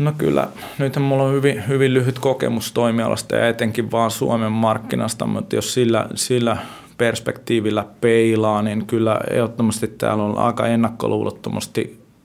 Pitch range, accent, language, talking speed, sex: 105-120 Hz, native, Finnish, 135 wpm, male